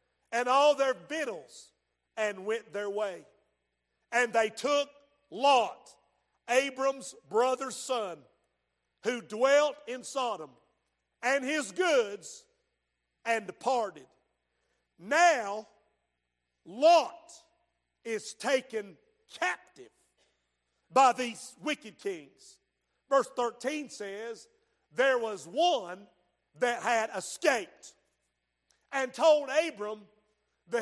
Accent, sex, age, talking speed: American, male, 50-69, 90 wpm